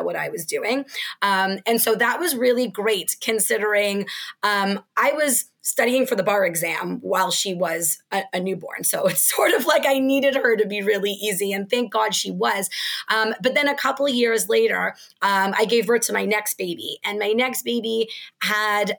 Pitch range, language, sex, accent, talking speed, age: 200-255 Hz, English, female, American, 200 wpm, 30-49